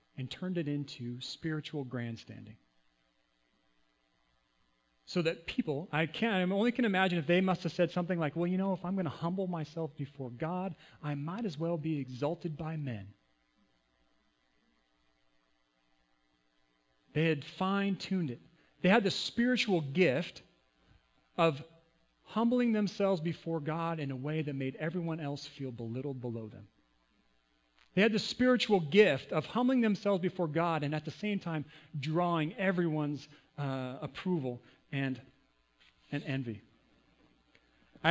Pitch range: 110-175 Hz